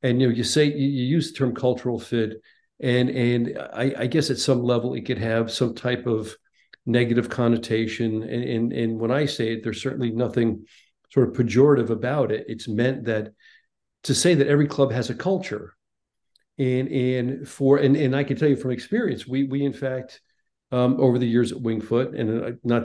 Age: 50-69